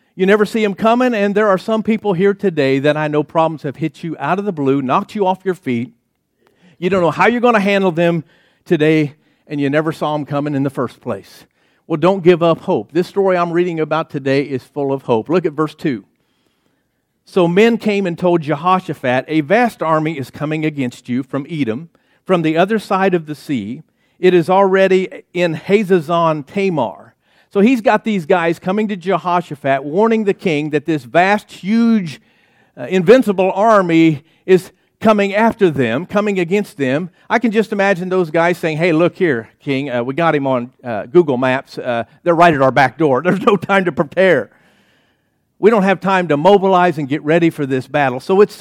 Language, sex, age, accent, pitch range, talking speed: English, male, 50-69, American, 150-195 Hz, 205 wpm